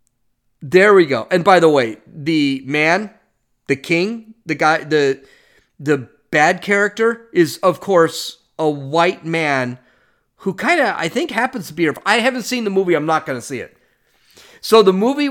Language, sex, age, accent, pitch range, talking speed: English, male, 40-59, American, 130-190 Hz, 180 wpm